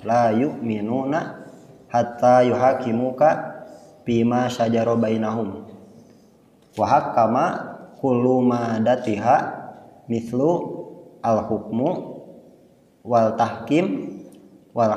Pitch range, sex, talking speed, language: 115-160 Hz, male, 55 wpm, Indonesian